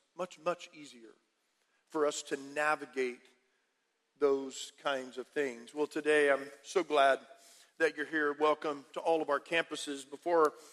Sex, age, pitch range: male, 40-59, 150-185 Hz